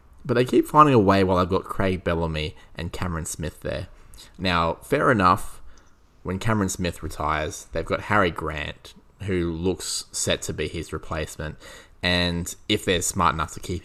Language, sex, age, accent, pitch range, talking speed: English, male, 20-39, Australian, 85-100 Hz, 175 wpm